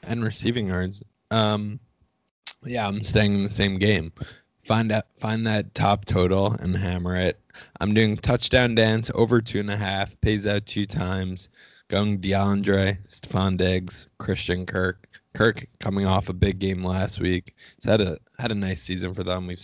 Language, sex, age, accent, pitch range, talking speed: English, male, 20-39, American, 95-115 Hz, 175 wpm